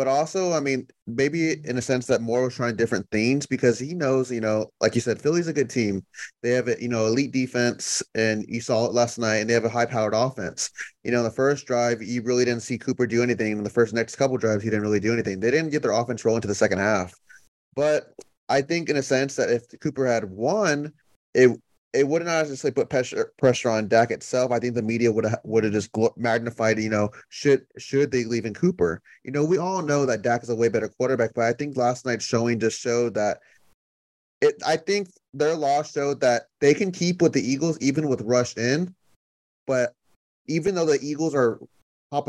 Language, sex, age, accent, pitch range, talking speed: English, male, 30-49, American, 115-140 Hz, 230 wpm